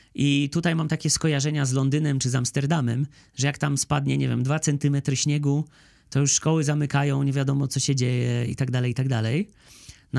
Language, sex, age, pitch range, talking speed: Polish, male, 30-49, 125-160 Hz, 185 wpm